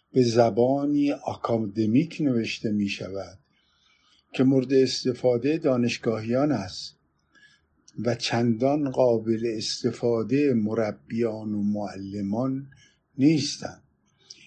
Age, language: 50-69, Persian